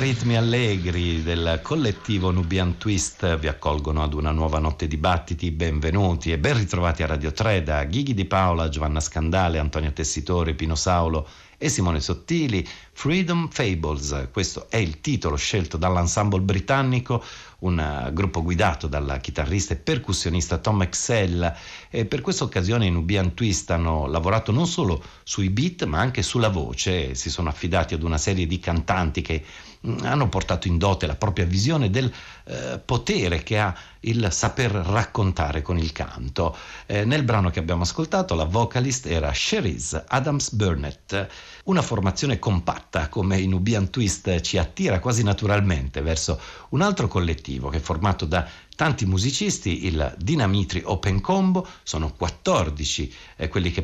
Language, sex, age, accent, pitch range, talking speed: Italian, male, 50-69, native, 80-105 Hz, 155 wpm